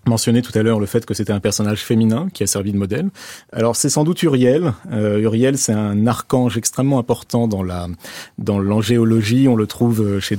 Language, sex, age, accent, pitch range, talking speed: French, male, 30-49, French, 110-130 Hz, 210 wpm